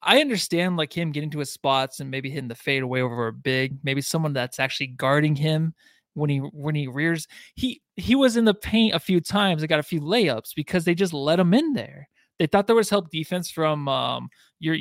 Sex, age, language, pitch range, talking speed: male, 20-39, English, 140-190 Hz, 235 wpm